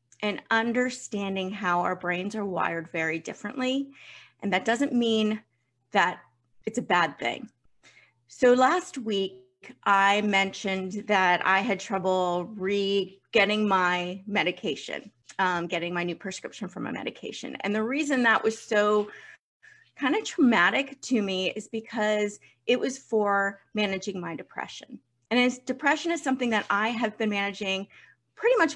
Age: 30-49